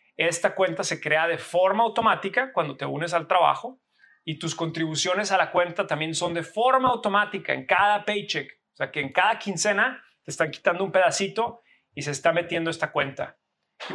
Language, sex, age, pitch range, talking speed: Spanish, male, 30-49, 160-210 Hz, 190 wpm